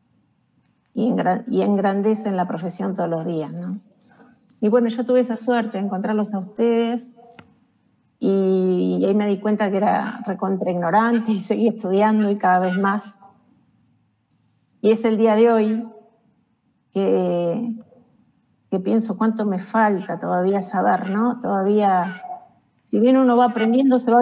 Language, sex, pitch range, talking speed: Spanish, female, 195-235 Hz, 140 wpm